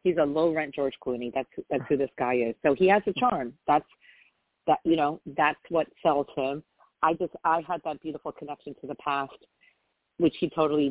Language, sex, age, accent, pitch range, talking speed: English, female, 40-59, American, 135-155 Hz, 210 wpm